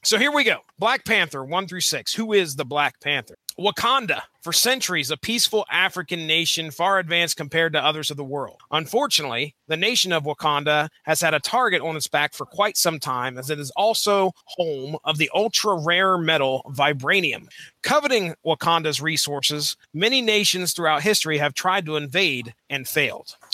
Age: 30-49